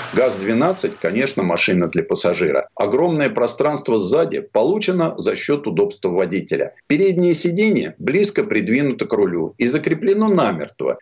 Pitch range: 150-225 Hz